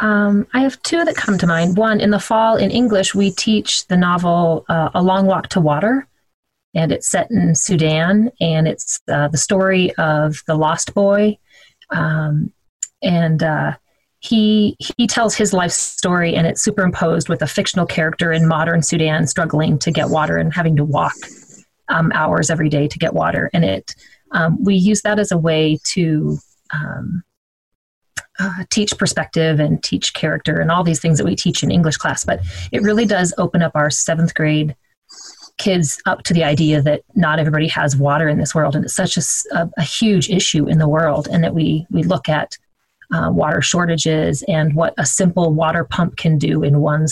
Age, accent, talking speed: 30-49, American, 190 wpm